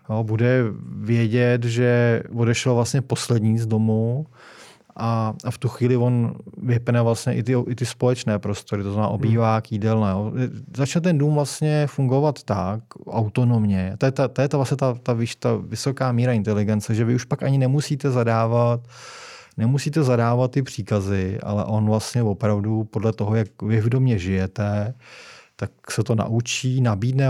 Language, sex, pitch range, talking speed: Czech, male, 110-125 Hz, 165 wpm